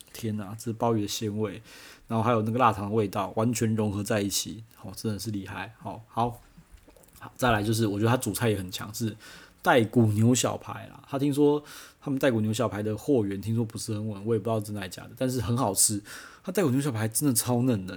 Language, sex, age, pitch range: Chinese, male, 30-49, 105-130 Hz